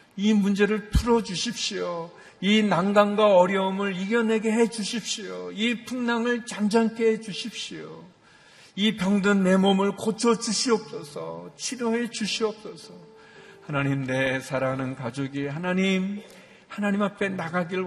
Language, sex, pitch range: Korean, male, 135-205 Hz